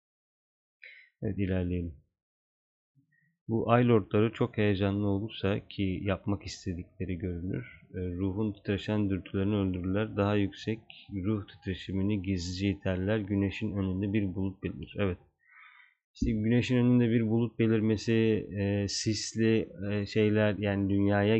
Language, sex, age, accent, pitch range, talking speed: Turkish, male, 30-49, native, 95-110 Hz, 105 wpm